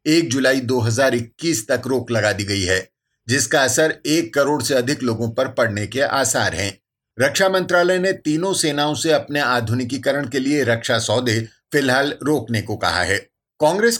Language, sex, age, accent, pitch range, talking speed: Hindi, male, 50-69, native, 125-160 Hz, 165 wpm